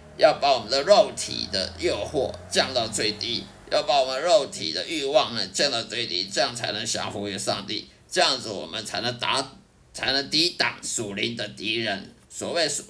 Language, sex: Chinese, male